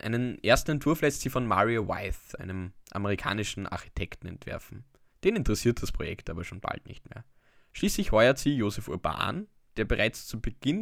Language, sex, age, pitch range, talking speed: German, male, 10-29, 95-130 Hz, 165 wpm